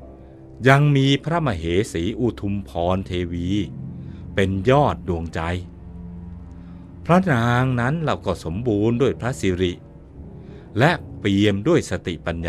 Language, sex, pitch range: Thai, male, 85-125 Hz